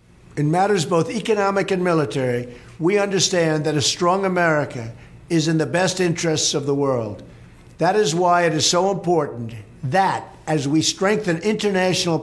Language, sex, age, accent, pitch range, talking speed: English, male, 50-69, American, 130-175 Hz, 155 wpm